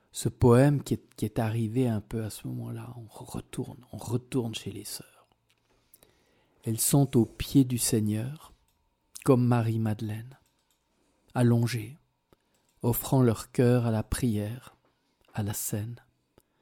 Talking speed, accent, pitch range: 135 wpm, French, 110-130 Hz